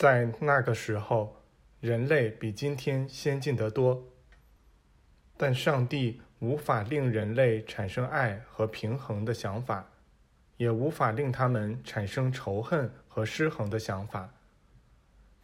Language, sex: Chinese, male